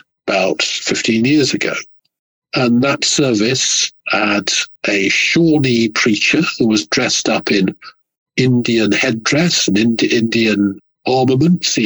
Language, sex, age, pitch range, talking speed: English, male, 60-79, 105-150 Hz, 115 wpm